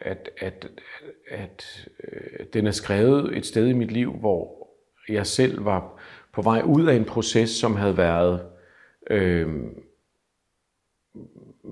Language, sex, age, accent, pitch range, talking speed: Danish, male, 50-69, native, 90-115 Hz, 135 wpm